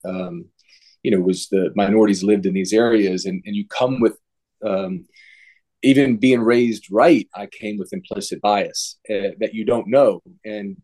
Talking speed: 170 wpm